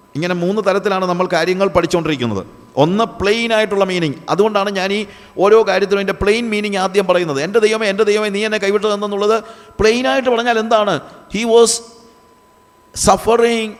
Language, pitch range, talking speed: Malayalam, 160-215 Hz, 145 wpm